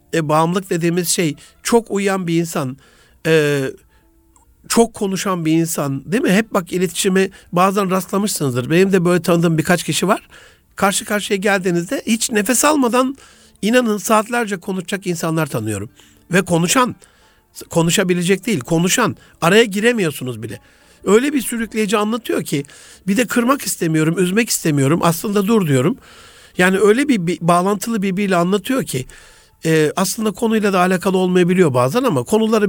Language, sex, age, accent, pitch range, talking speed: Turkish, male, 60-79, native, 170-215 Hz, 140 wpm